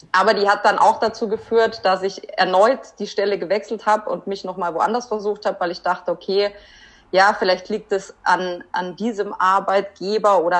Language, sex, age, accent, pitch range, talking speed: German, female, 20-39, German, 175-215 Hz, 185 wpm